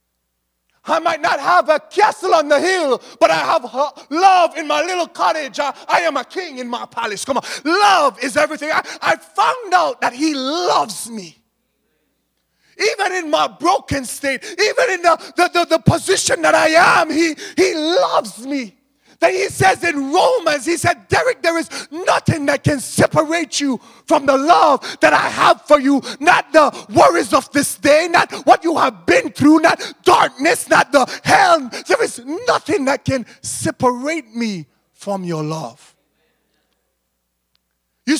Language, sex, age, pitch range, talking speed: English, male, 30-49, 220-335 Hz, 170 wpm